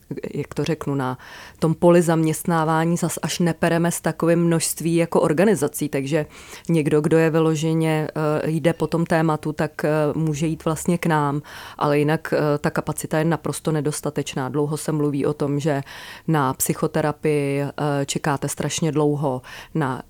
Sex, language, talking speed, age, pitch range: female, Czech, 145 wpm, 30-49, 150-165 Hz